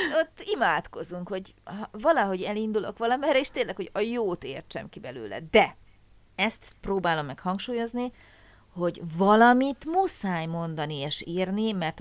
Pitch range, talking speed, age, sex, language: 160-225 Hz, 130 wpm, 30-49, female, Hungarian